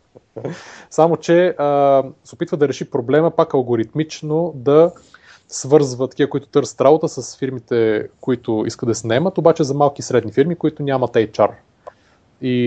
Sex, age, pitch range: male, 30-49, 110-140 Hz